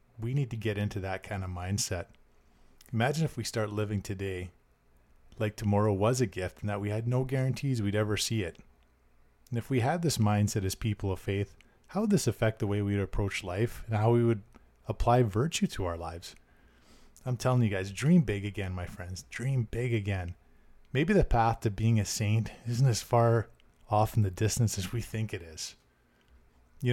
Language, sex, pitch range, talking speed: English, male, 95-115 Hz, 205 wpm